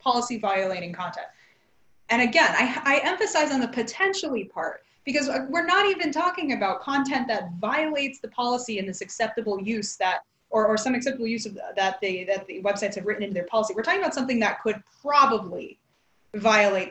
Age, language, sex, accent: 20-39, English, female, American